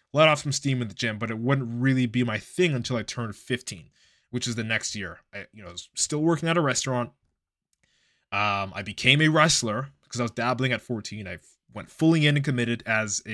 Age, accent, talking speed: 20-39, American, 220 wpm